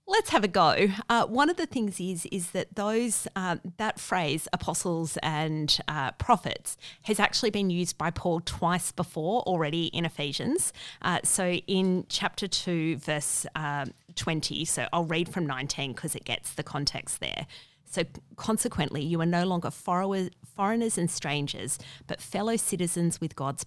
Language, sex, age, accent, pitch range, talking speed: English, female, 30-49, Australian, 150-180 Hz, 160 wpm